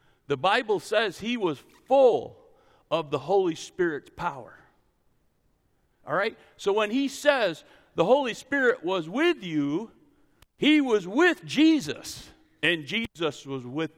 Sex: male